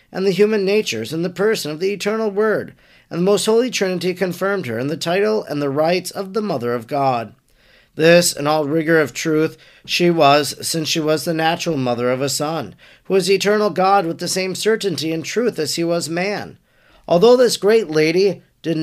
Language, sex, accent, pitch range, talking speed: English, male, American, 155-205 Hz, 205 wpm